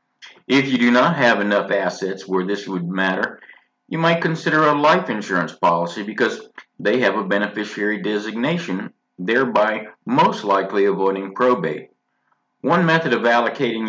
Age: 50-69